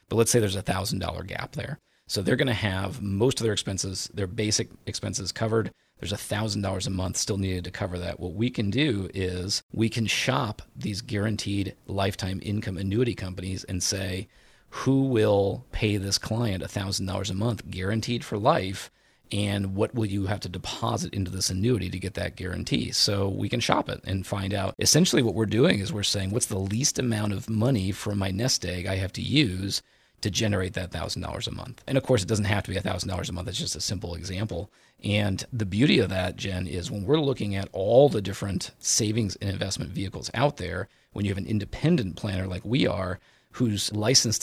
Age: 40-59